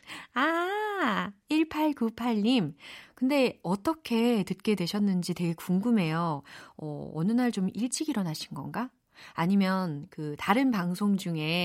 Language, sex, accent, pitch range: Korean, female, native, 165-235 Hz